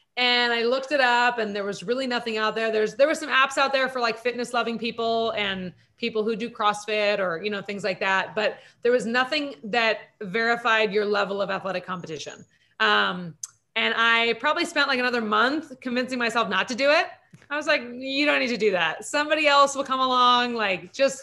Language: English